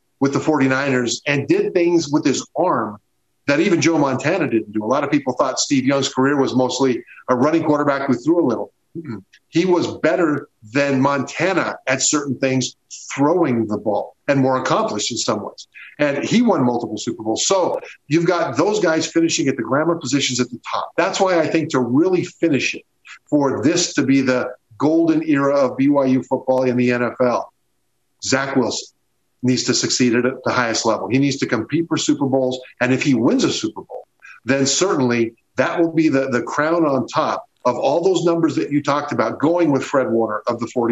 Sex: male